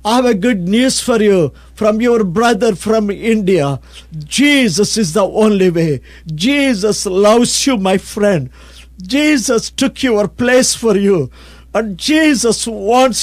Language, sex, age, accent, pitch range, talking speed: English, male, 50-69, Indian, 205-255 Hz, 140 wpm